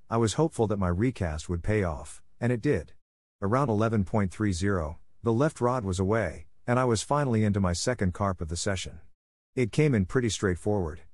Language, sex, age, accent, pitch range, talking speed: English, male, 50-69, American, 90-115 Hz, 190 wpm